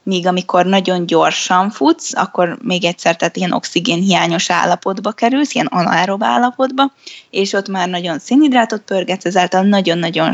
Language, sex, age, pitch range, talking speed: Hungarian, female, 10-29, 175-200 Hz, 145 wpm